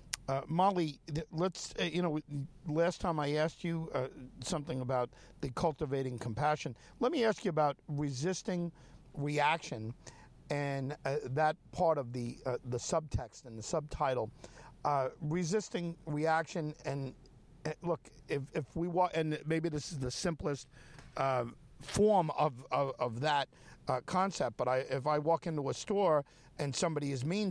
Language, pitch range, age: English, 130-165 Hz, 50-69